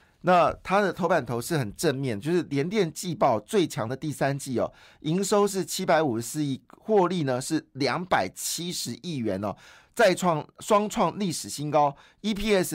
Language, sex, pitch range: Chinese, male, 130-180 Hz